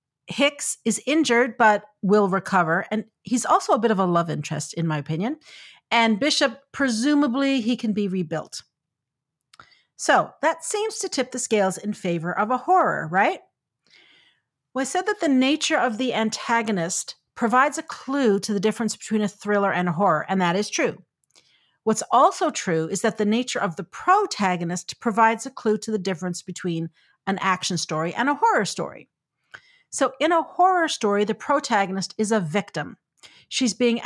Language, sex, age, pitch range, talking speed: English, female, 40-59, 195-255 Hz, 175 wpm